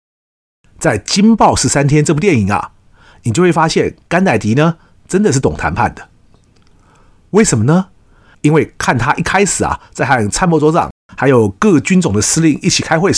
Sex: male